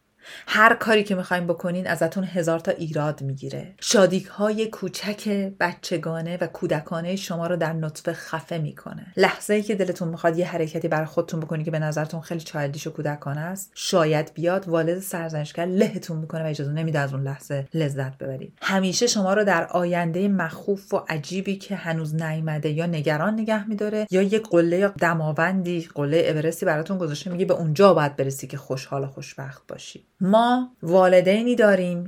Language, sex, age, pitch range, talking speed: Persian, female, 40-59, 155-190 Hz, 165 wpm